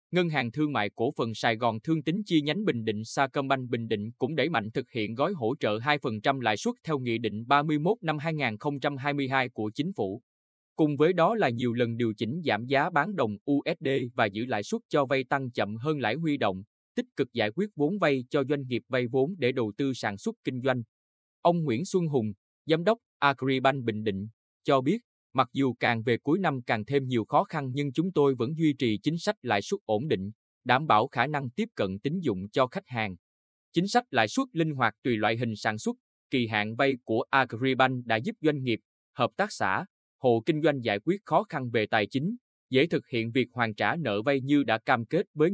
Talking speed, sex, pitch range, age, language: 225 wpm, male, 115-150 Hz, 20-39, Vietnamese